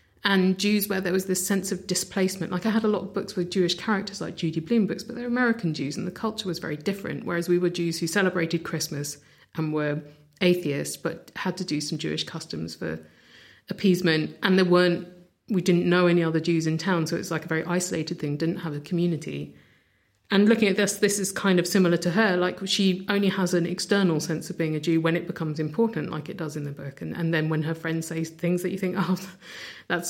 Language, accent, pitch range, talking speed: English, British, 155-195 Hz, 235 wpm